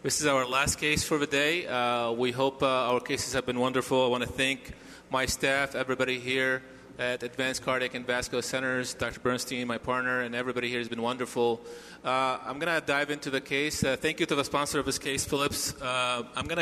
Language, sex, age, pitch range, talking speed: English, male, 30-49, 125-145 Hz, 225 wpm